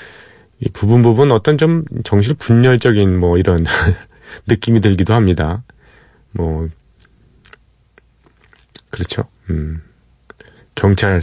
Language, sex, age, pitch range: Korean, male, 40-59, 90-120 Hz